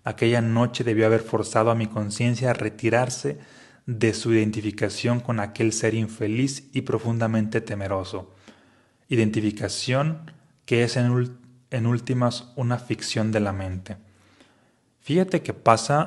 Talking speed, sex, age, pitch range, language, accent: 125 wpm, male, 30-49, 105-125 Hz, Spanish, Mexican